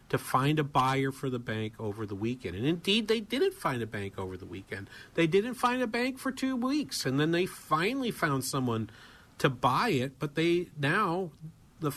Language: English